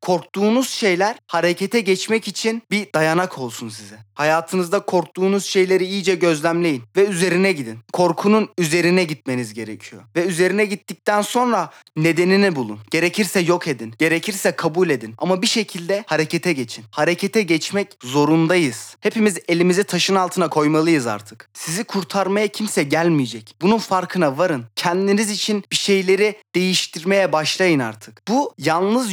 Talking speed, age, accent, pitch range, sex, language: 130 wpm, 30-49, native, 160-205 Hz, male, Turkish